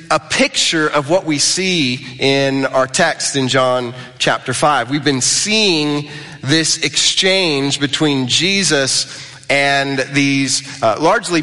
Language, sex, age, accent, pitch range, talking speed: English, male, 30-49, American, 135-170 Hz, 125 wpm